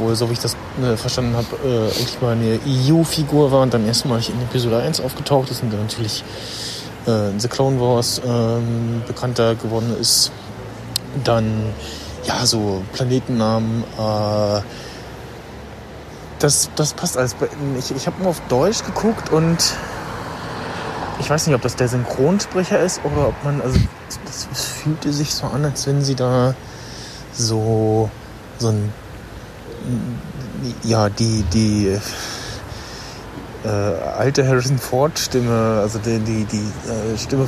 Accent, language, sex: German, German, male